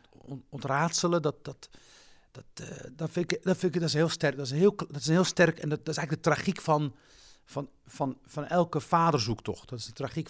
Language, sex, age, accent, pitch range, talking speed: Dutch, male, 50-69, Dutch, 120-160 Hz, 225 wpm